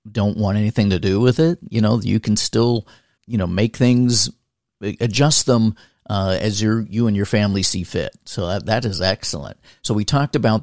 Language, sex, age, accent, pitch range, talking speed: English, male, 50-69, American, 95-120 Hz, 205 wpm